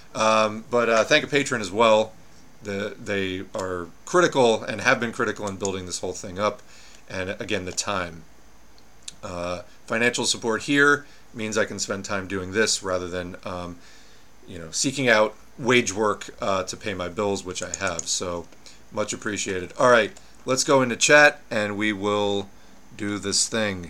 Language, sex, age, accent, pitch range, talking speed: English, male, 40-59, American, 100-125 Hz, 175 wpm